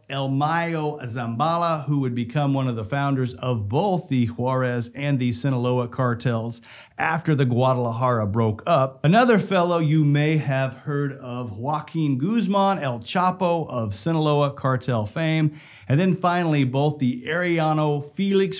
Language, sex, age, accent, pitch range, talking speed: English, male, 40-59, American, 125-160 Hz, 145 wpm